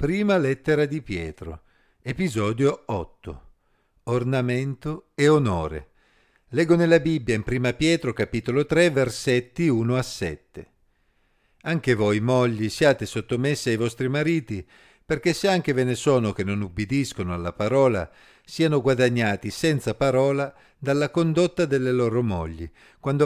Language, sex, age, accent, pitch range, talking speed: Italian, male, 50-69, native, 110-150 Hz, 130 wpm